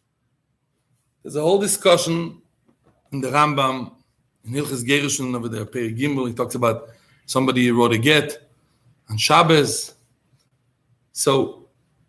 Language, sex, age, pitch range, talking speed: English, male, 40-59, 135-200 Hz, 115 wpm